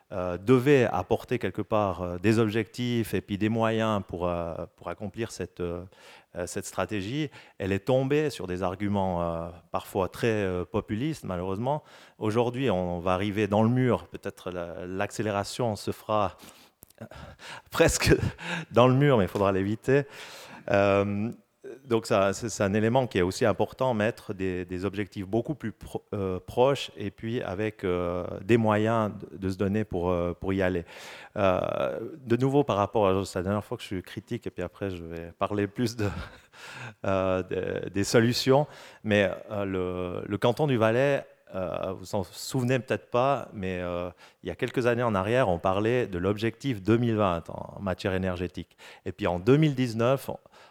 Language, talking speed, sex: French, 175 wpm, male